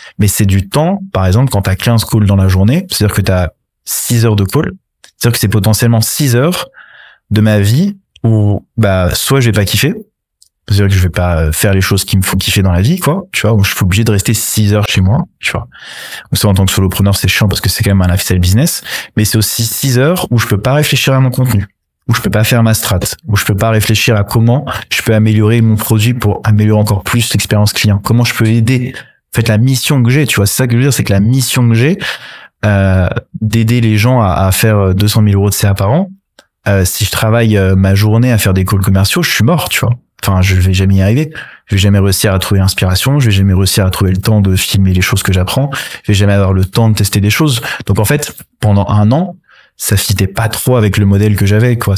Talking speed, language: 265 wpm, French